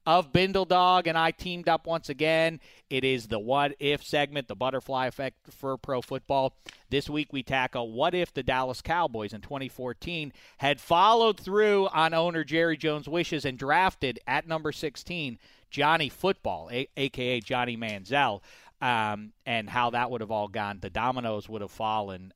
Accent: American